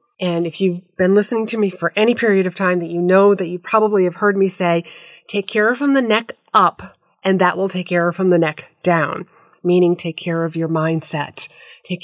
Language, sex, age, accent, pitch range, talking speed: English, female, 30-49, American, 170-230 Hz, 220 wpm